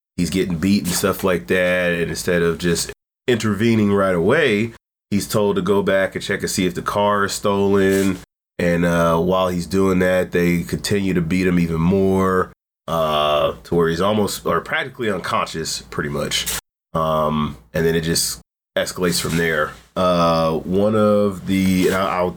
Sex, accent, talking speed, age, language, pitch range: male, American, 170 wpm, 30-49, English, 85-100 Hz